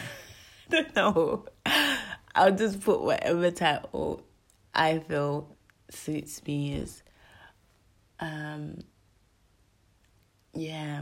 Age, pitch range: 20-39, 140-180 Hz